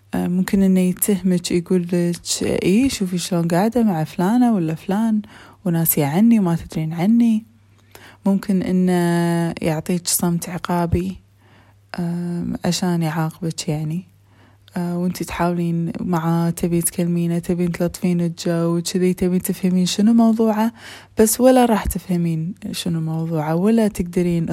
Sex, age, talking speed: female, 20-39, 115 wpm